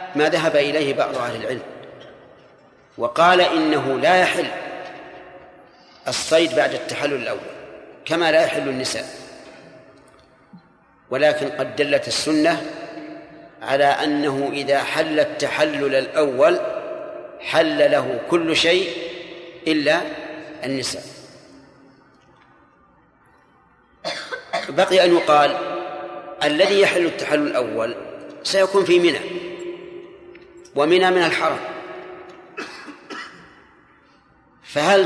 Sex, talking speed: male, 80 wpm